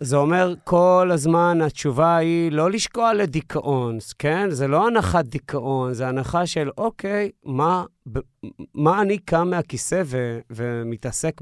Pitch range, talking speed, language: 125-170 Hz, 130 wpm, Hebrew